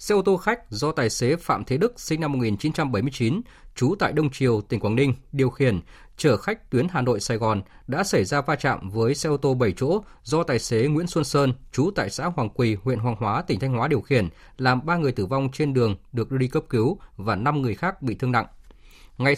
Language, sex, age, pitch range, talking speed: Vietnamese, male, 20-39, 115-150 Hz, 240 wpm